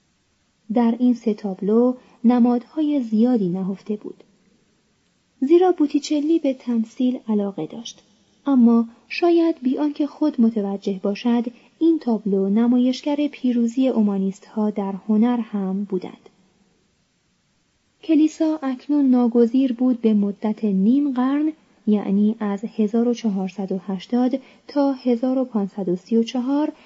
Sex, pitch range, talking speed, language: female, 210-270 Hz, 100 wpm, Persian